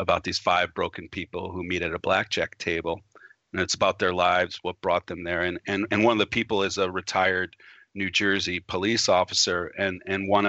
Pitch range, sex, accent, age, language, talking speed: 90-100 Hz, male, American, 40-59, English, 210 wpm